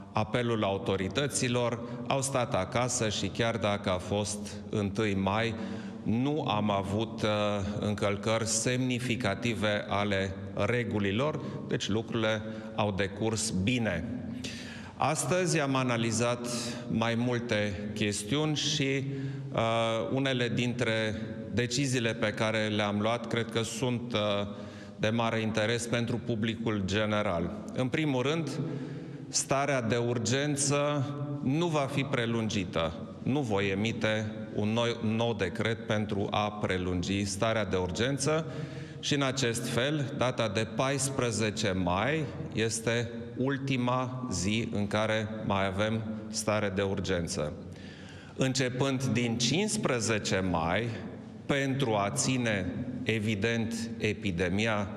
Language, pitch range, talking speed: Romanian, 105-130 Hz, 110 wpm